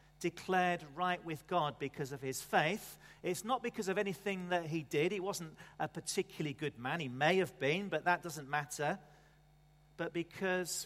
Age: 40-59